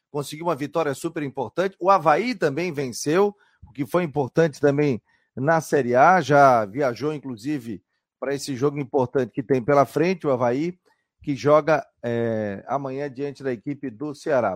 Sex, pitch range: male, 135-165 Hz